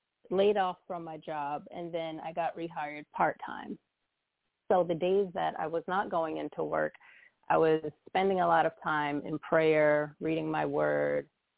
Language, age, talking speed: English, 30-49, 170 wpm